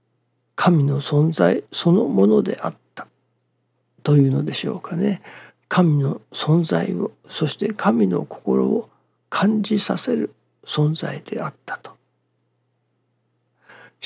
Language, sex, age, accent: Japanese, male, 60-79, native